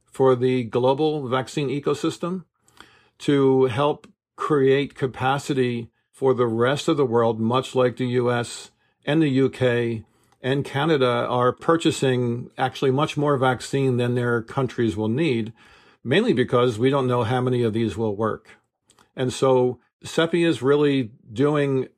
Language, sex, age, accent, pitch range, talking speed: English, male, 50-69, American, 115-130 Hz, 140 wpm